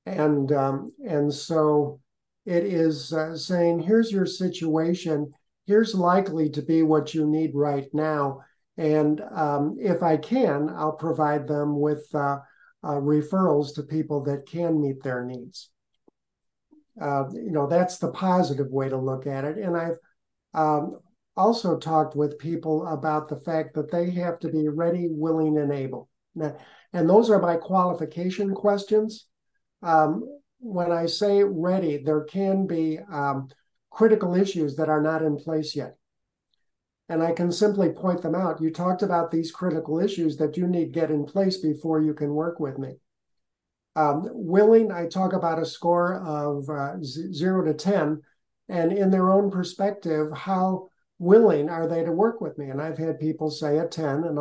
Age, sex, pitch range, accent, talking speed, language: 50-69, male, 150-185 Hz, American, 170 wpm, English